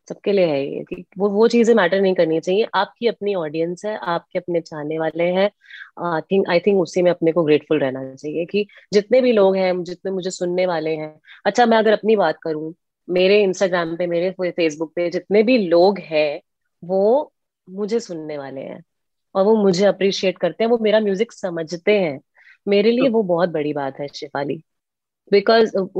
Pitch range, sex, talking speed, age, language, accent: 165-210 Hz, female, 190 wpm, 30-49, Hindi, native